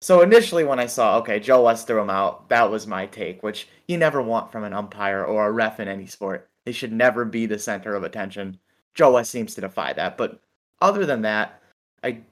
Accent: American